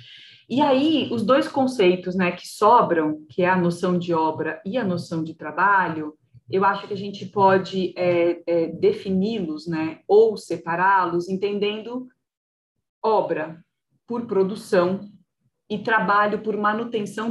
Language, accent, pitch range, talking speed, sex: Portuguese, Brazilian, 175-230 Hz, 135 wpm, female